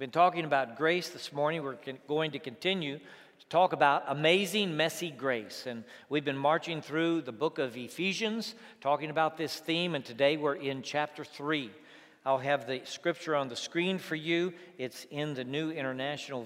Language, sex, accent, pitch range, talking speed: English, male, American, 140-180 Hz, 180 wpm